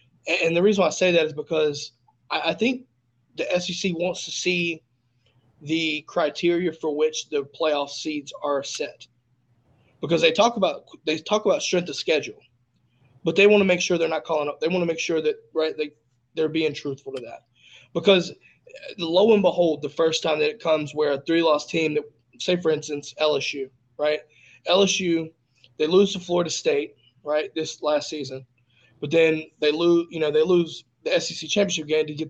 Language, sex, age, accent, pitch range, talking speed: English, male, 20-39, American, 135-175 Hz, 195 wpm